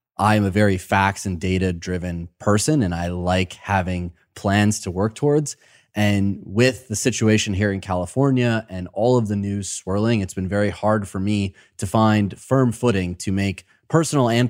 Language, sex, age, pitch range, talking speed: English, male, 20-39, 95-115 Hz, 180 wpm